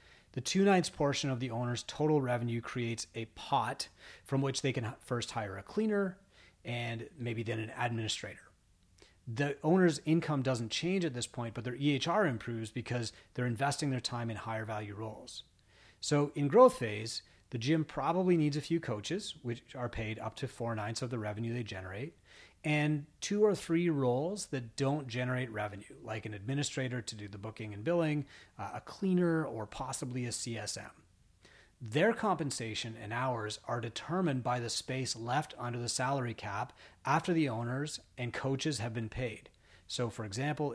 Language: English